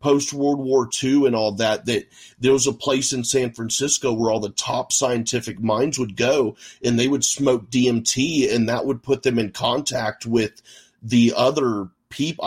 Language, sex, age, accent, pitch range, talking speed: English, male, 40-59, American, 110-130 Hz, 190 wpm